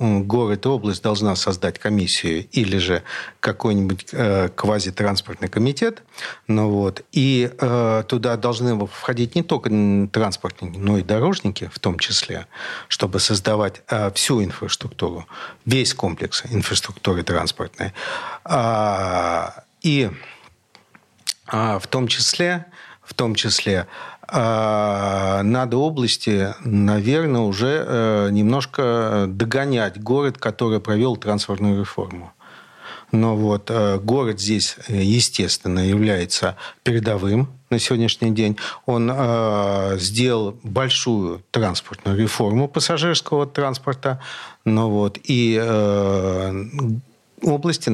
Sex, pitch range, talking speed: male, 100-125 Hz, 95 wpm